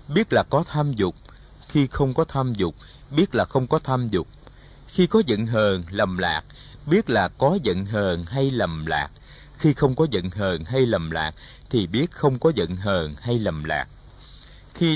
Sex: male